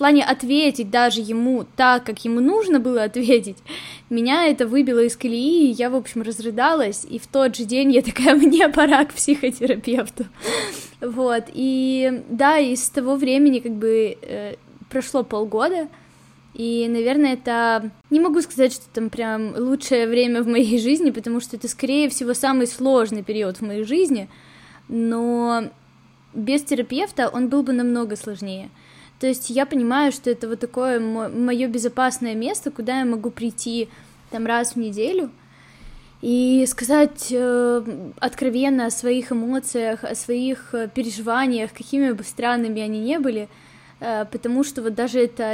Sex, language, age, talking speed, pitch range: female, Ukrainian, 10-29, 155 wpm, 225-265 Hz